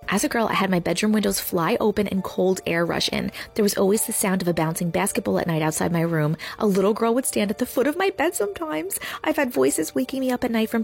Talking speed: 275 wpm